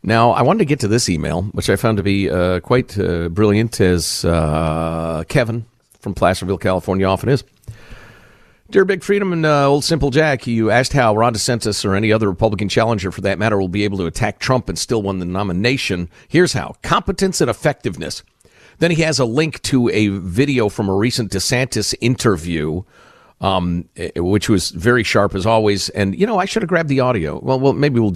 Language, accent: English, American